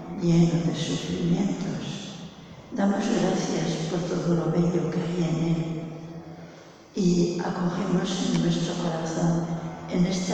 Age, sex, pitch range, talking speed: 60-79, female, 165-185 Hz, 115 wpm